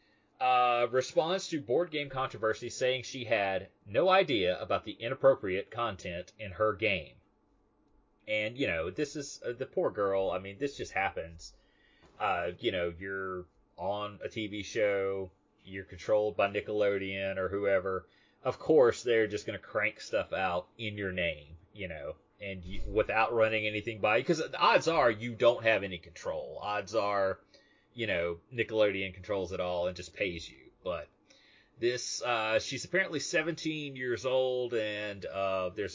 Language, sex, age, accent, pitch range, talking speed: English, male, 30-49, American, 100-135 Hz, 160 wpm